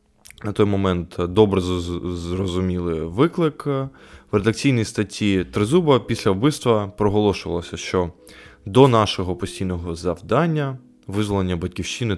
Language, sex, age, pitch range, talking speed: Ukrainian, male, 20-39, 90-110 Hz, 110 wpm